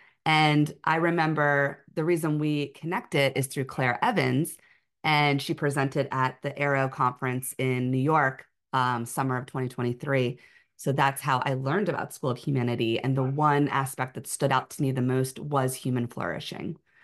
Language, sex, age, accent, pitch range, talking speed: English, female, 30-49, American, 135-165 Hz, 170 wpm